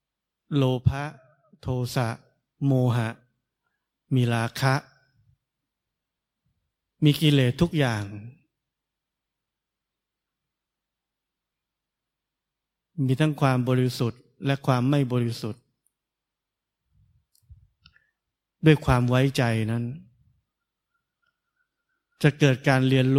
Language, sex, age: Thai, male, 20-39